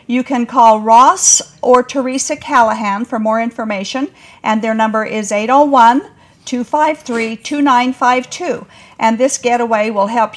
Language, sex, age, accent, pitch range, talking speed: English, female, 50-69, American, 225-295 Hz, 115 wpm